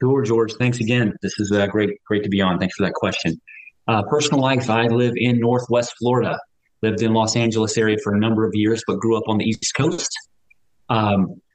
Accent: American